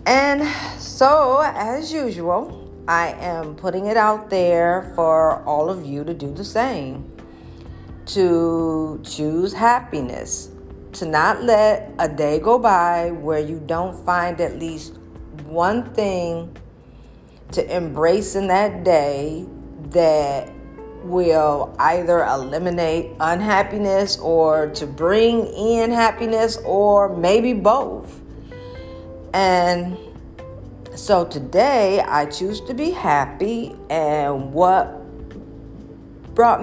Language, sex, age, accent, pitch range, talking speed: English, female, 50-69, American, 160-205 Hz, 105 wpm